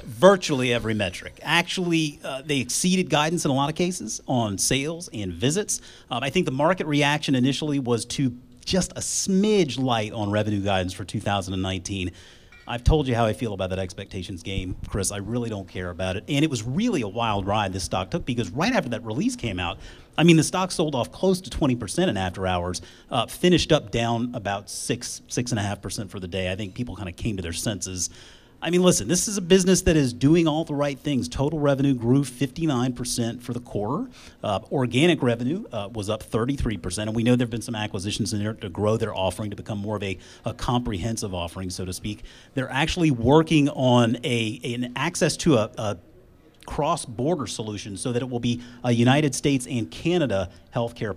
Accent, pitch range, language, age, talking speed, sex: American, 105-145 Hz, English, 30-49, 210 wpm, male